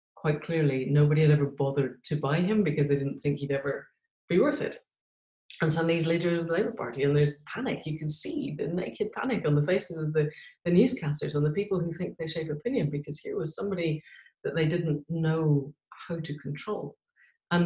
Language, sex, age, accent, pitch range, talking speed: English, female, 30-49, British, 150-180 Hz, 210 wpm